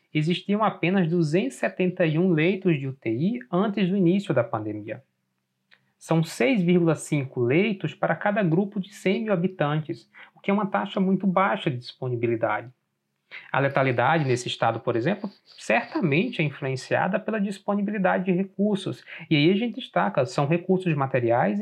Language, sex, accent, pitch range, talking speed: Portuguese, male, Brazilian, 125-185 Hz, 140 wpm